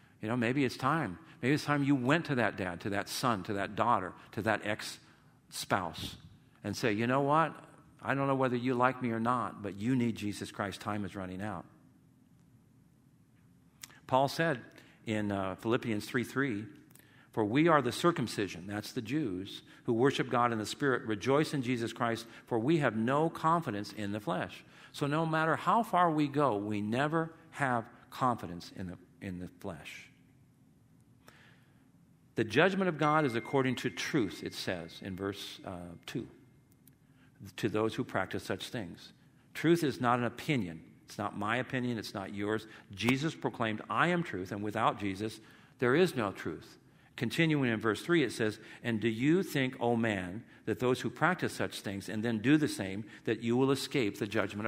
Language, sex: English, male